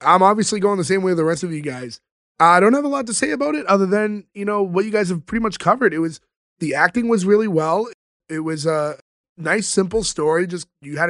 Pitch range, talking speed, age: 160-195 Hz, 260 wpm, 20-39